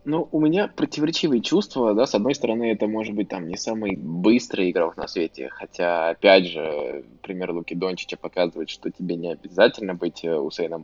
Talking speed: 175 wpm